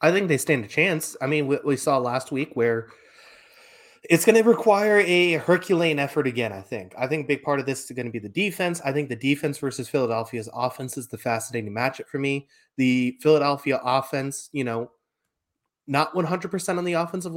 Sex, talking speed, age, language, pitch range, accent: male, 205 wpm, 20-39, English, 125-160 Hz, American